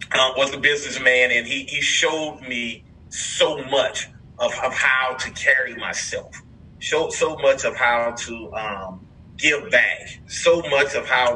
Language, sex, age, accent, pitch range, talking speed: English, male, 30-49, American, 110-145 Hz, 160 wpm